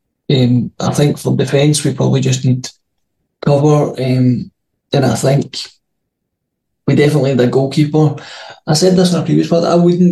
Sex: male